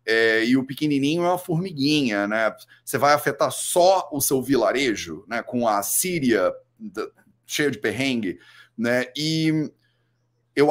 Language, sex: Portuguese, male